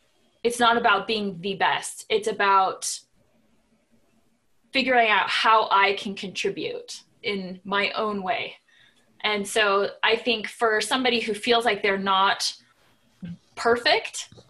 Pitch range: 195-235 Hz